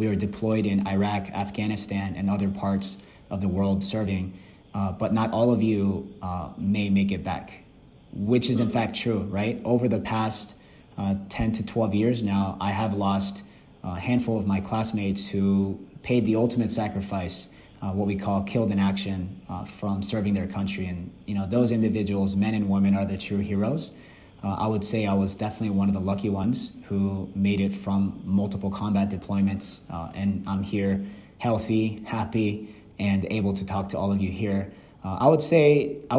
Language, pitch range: English, 100-110 Hz